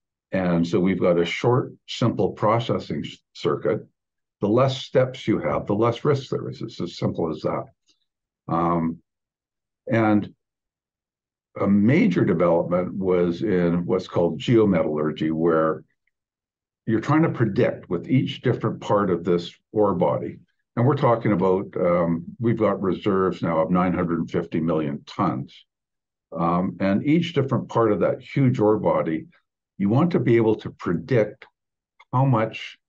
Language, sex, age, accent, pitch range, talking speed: English, male, 60-79, American, 85-110 Hz, 145 wpm